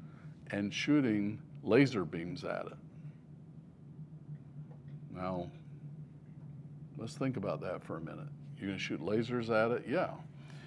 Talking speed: 120 wpm